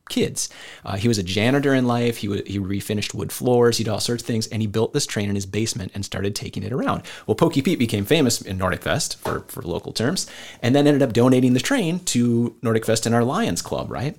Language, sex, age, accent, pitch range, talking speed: English, male, 30-49, American, 100-130 Hz, 250 wpm